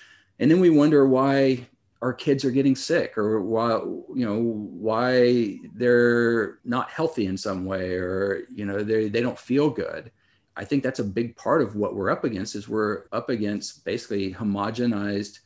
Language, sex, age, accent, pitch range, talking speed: English, male, 50-69, American, 100-115 Hz, 180 wpm